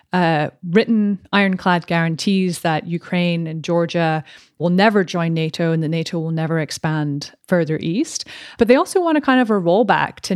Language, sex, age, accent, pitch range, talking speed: English, female, 30-49, American, 165-200 Hz, 170 wpm